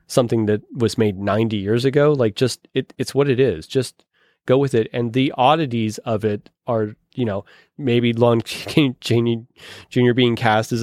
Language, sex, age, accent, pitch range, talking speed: English, male, 30-49, American, 105-130 Hz, 185 wpm